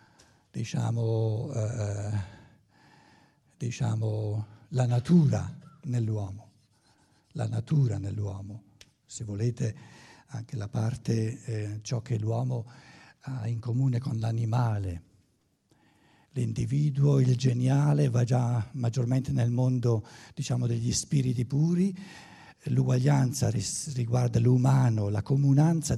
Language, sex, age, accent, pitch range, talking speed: Italian, male, 60-79, native, 115-140 Hz, 90 wpm